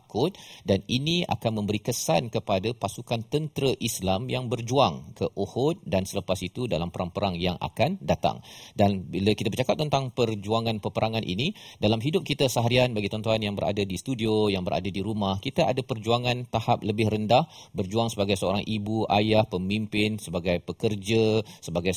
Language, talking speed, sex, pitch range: Malayalam, 155 wpm, male, 105-135 Hz